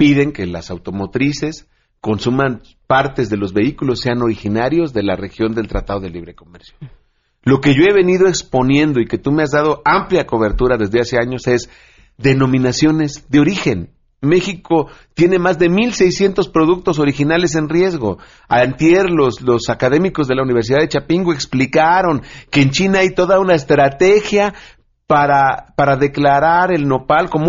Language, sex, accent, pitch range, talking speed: Spanish, male, Mexican, 120-165 Hz, 155 wpm